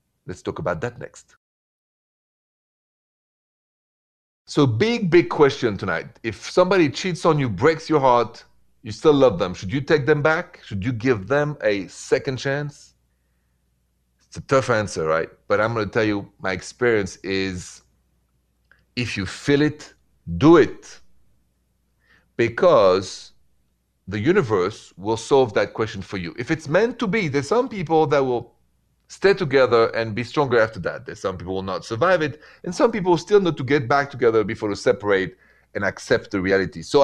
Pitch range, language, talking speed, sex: 95-145 Hz, English, 165 wpm, male